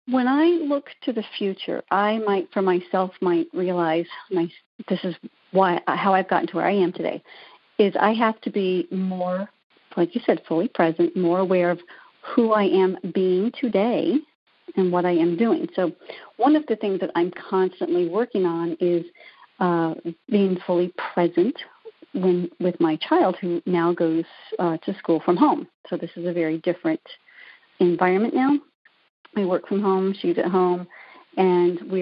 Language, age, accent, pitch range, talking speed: English, 50-69, American, 175-225 Hz, 170 wpm